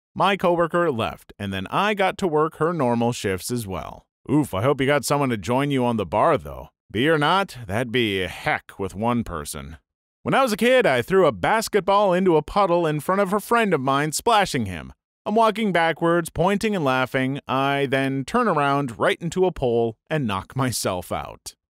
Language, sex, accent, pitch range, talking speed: English, male, American, 110-170 Hz, 205 wpm